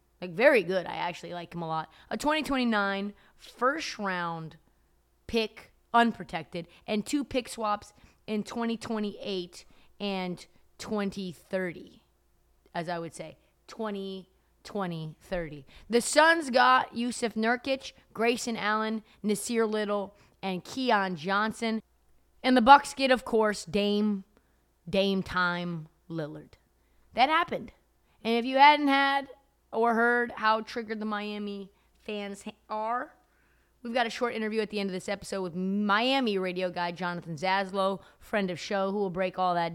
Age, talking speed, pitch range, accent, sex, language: 20-39, 140 wpm, 180-235 Hz, American, female, English